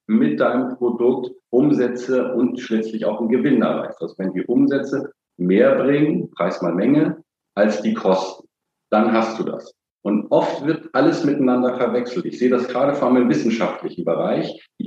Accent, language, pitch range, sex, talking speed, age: German, German, 110-130 Hz, male, 170 wpm, 50-69